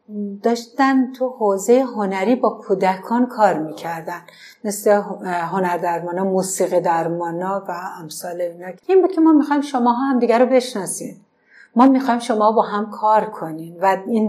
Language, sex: Persian, female